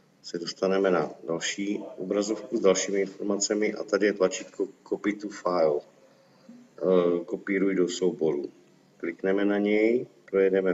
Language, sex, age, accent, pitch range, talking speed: Czech, male, 50-69, native, 90-105 Hz, 125 wpm